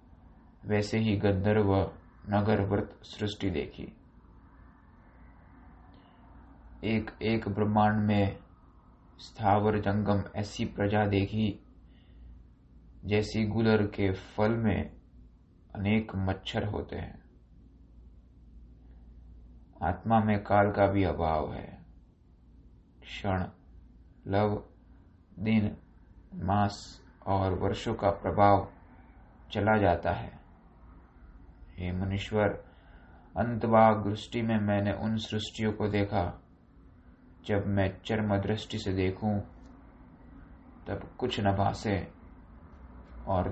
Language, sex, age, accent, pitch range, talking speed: Hindi, male, 20-39, native, 85-105 Hz, 90 wpm